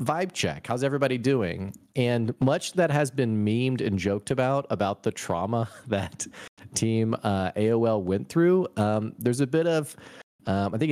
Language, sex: English, male